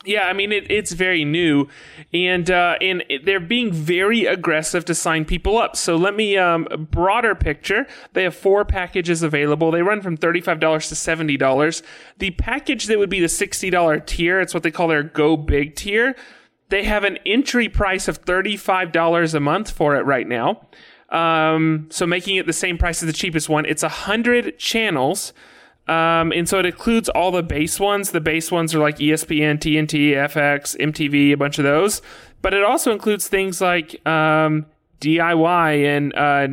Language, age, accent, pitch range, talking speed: English, 30-49, American, 150-195 Hz, 180 wpm